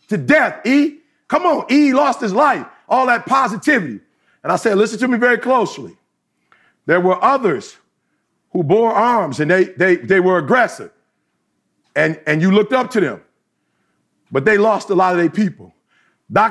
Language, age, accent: English, 40-59, American